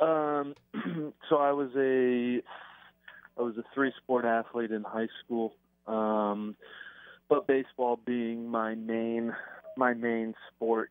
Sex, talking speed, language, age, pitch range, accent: male, 125 wpm, English, 30-49, 105-120 Hz, American